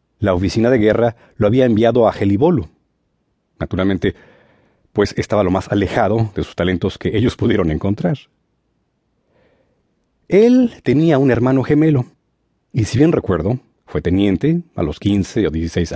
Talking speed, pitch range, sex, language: 145 wpm, 95-130 Hz, male, English